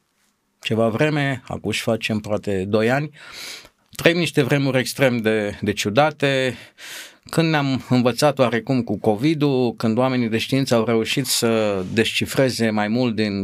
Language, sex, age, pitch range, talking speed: Romanian, male, 50-69, 110-150 Hz, 145 wpm